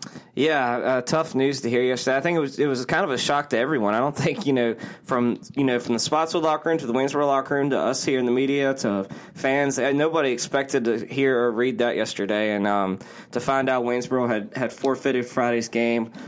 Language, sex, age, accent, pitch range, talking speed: English, male, 20-39, American, 115-130 Hz, 235 wpm